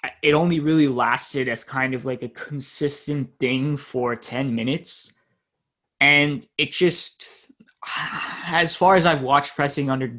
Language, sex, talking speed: English, male, 140 wpm